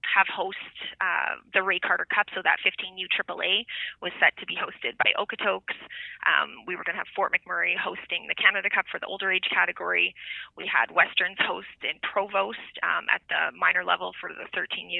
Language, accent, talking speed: English, American, 190 wpm